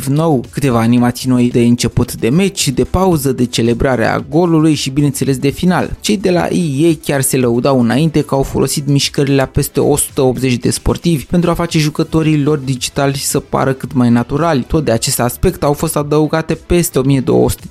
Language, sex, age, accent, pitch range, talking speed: Romanian, male, 20-39, native, 125-160 Hz, 185 wpm